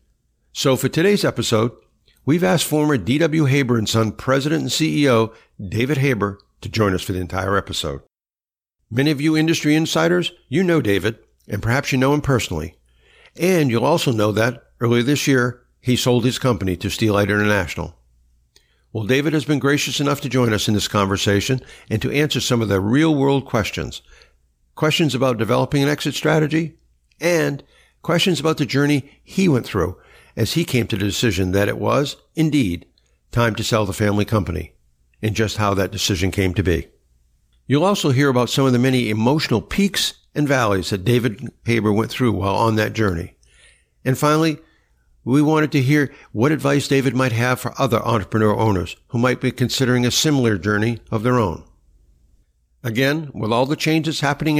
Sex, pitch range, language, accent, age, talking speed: male, 100-145 Hz, English, American, 60-79, 175 wpm